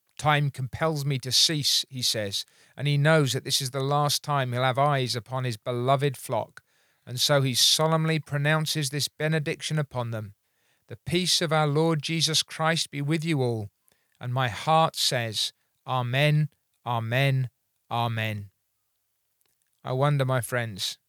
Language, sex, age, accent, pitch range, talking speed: English, male, 40-59, British, 125-150 Hz, 155 wpm